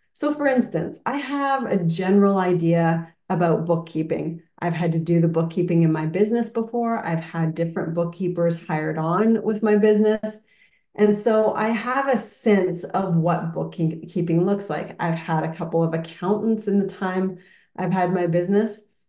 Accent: American